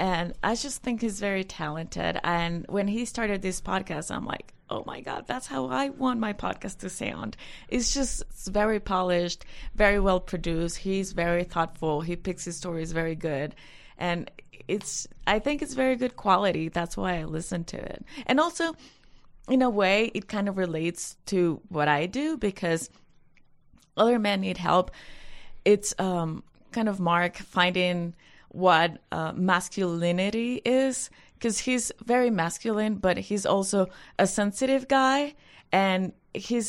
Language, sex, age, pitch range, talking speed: English, female, 30-49, 170-220 Hz, 160 wpm